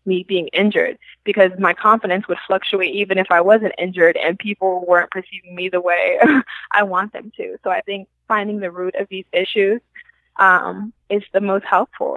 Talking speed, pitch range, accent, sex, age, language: 185 wpm, 180-200 Hz, American, female, 20-39, English